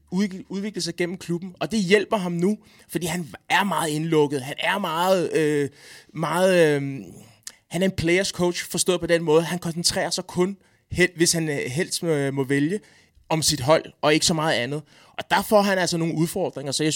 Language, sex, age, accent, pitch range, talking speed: Danish, male, 20-39, native, 150-180 Hz, 200 wpm